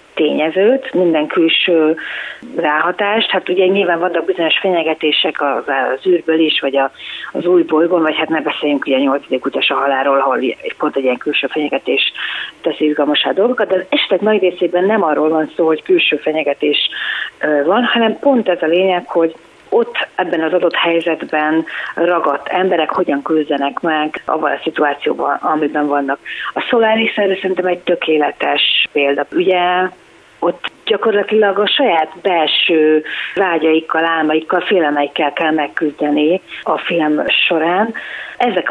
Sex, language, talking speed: female, Hungarian, 140 wpm